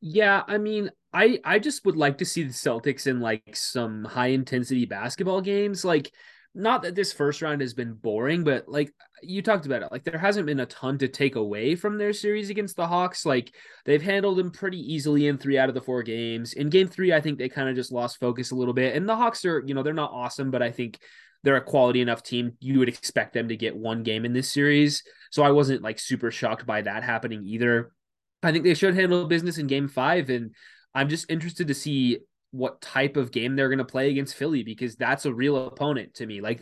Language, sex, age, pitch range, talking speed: English, male, 20-39, 125-165 Hz, 240 wpm